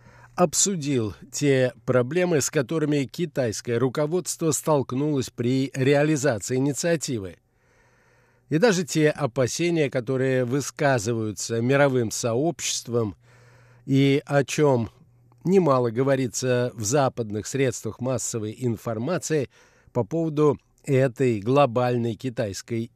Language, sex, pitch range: Russian, male, 120-150 Hz